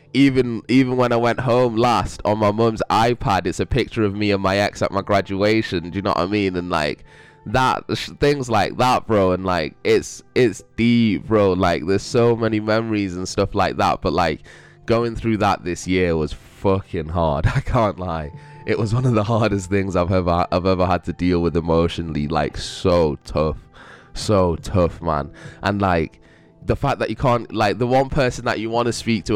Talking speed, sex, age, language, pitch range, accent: 210 wpm, male, 10-29, English, 95-110 Hz, British